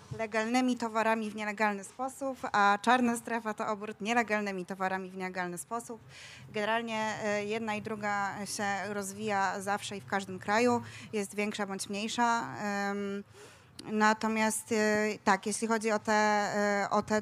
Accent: native